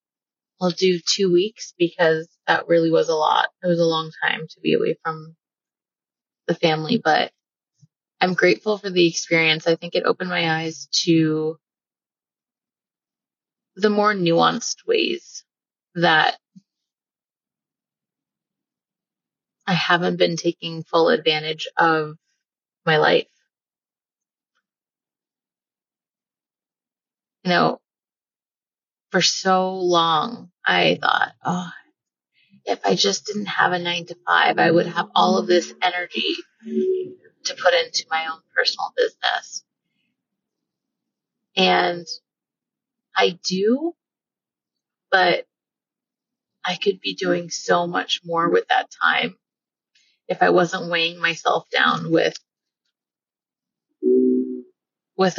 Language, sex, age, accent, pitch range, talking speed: English, female, 20-39, American, 160-205 Hz, 110 wpm